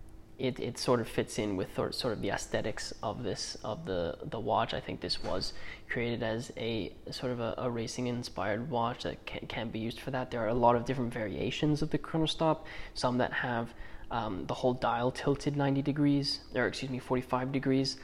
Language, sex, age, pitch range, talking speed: English, male, 20-39, 115-140 Hz, 210 wpm